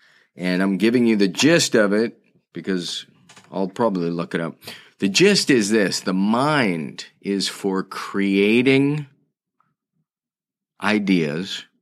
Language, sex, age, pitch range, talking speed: English, male, 30-49, 90-105 Hz, 120 wpm